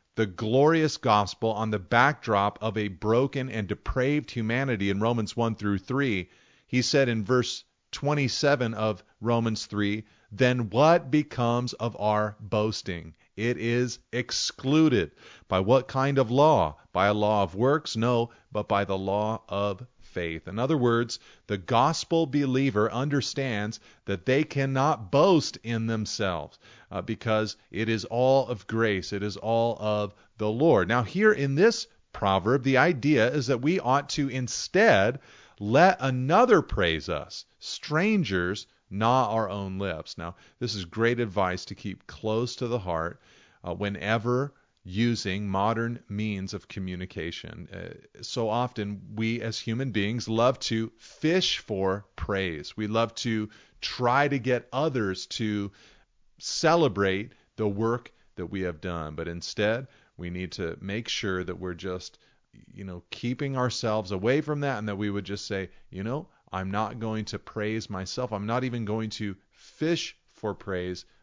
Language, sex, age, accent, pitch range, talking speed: English, male, 40-59, American, 100-125 Hz, 155 wpm